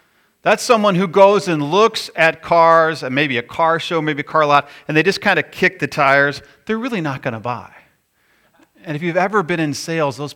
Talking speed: 225 wpm